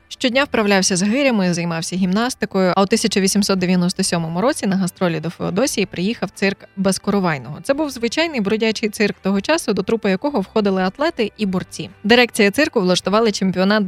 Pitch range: 180-220 Hz